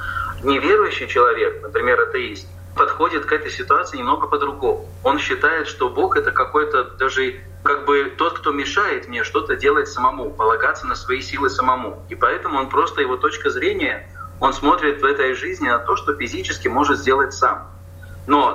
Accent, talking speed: native, 165 wpm